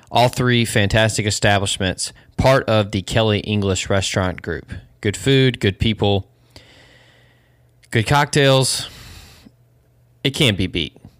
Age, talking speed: 20-39, 115 wpm